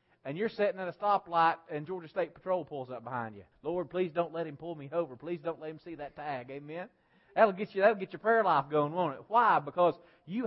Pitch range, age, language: 150-205 Hz, 40-59, English